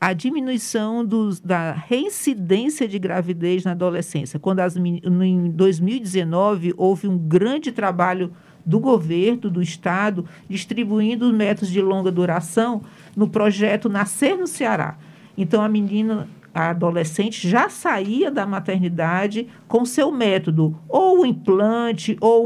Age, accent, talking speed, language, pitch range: 50-69, Brazilian, 125 wpm, Portuguese, 180-230 Hz